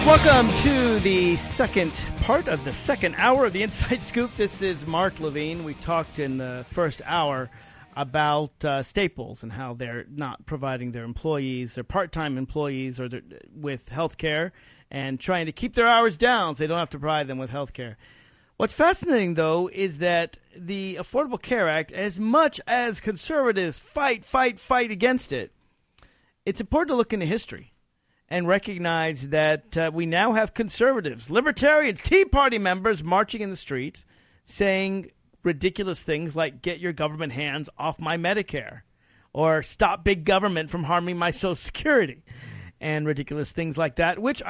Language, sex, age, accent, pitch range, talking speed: English, male, 40-59, American, 150-220 Hz, 165 wpm